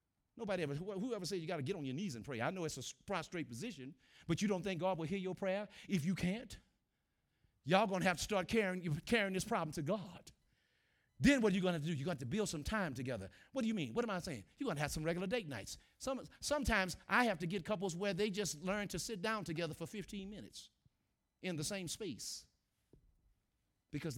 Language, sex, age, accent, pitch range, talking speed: English, male, 50-69, American, 140-195 Hz, 245 wpm